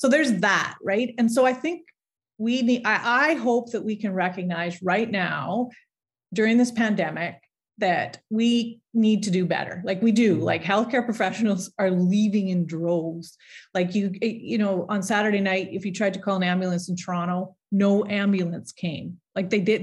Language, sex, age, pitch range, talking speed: English, female, 30-49, 180-220 Hz, 180 wpm